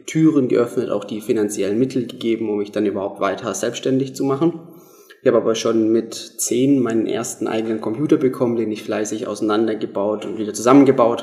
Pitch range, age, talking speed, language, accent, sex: 100-115 Hz, 20-39, 175 wpm, German, German, male